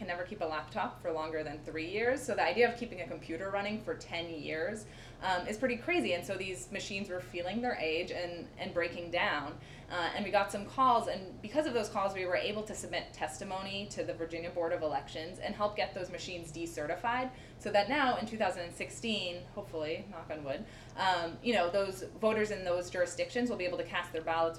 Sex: female